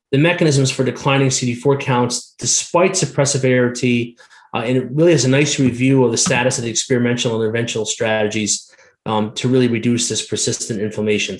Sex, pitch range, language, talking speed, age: male, 120-145 Hz, English, 170 wpm, 30-49